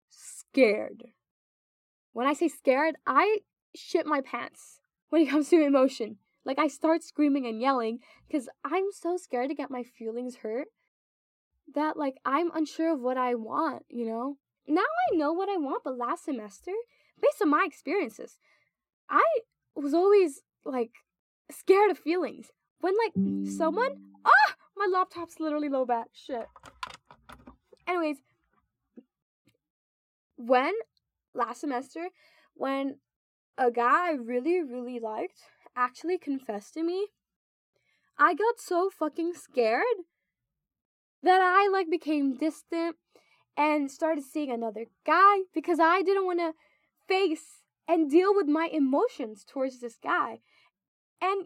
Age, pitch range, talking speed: 10-29, 255-360 Hz, 135 wpm